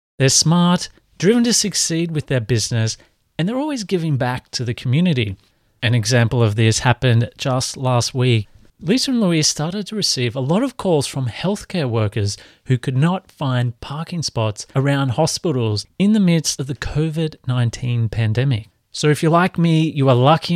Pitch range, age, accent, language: 115-140 Hz, 30-49, Australian, English